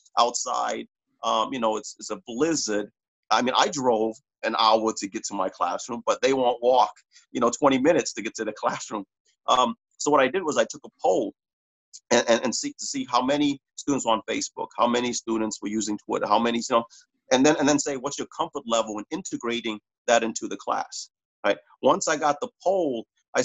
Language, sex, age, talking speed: English, male, 40-59, 225 wpm